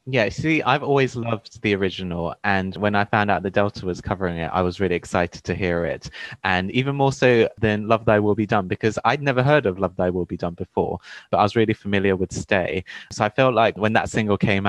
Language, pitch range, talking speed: English, 95-125 Hz, 245 wpm